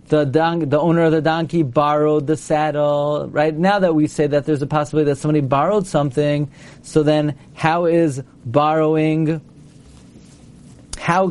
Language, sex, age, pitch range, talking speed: English, male, 40-59, 145-165 Hz, 155 wpm